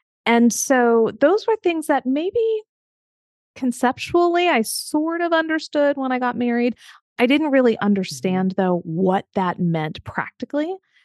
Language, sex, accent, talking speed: English, female, American, 135 wpm